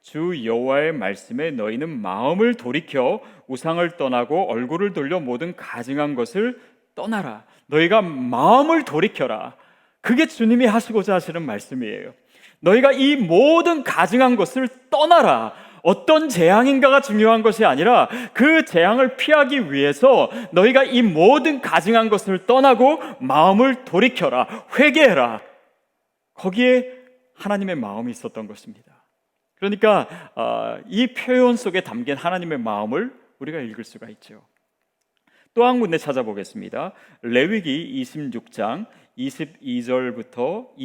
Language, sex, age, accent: Korean, male, 30-49, native